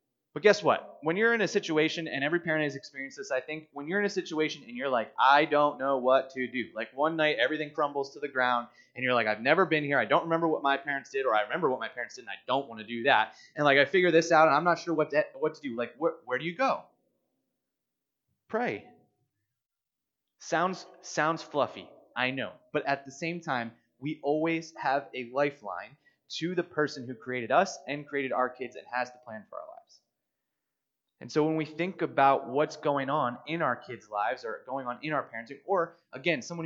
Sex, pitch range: male, 130-160 Hz